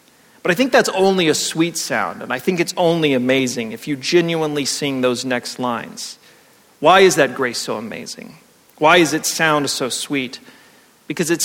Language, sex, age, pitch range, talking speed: English, male, 40-59, 135-165 Hz, 185 wpm